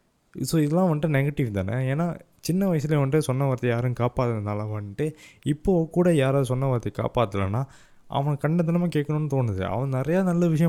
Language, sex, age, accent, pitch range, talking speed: Tamil, male, 20-39, native, 120-160 Hz, 155 wpm